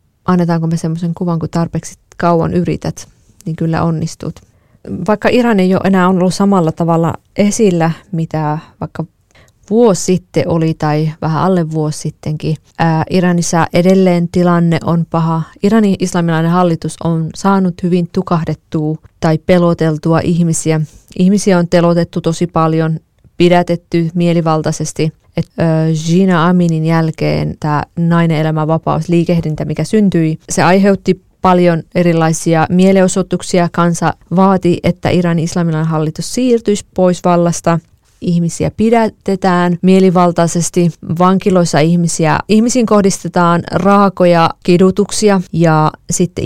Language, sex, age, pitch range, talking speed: Finnish, female, 20-39, 160-185 Hz, 115 wpm